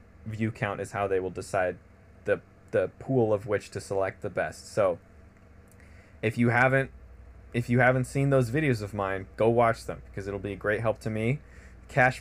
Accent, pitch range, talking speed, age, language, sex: American, 95-120 Hz, 195 wpm, 20-39, English, male